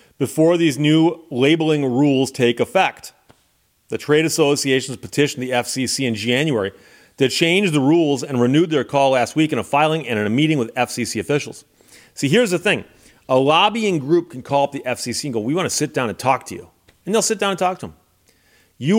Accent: American